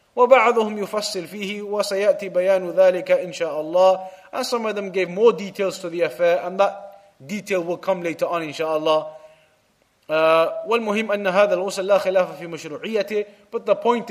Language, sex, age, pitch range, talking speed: English, male, 30-49, 185-235 Hz, 130 wpm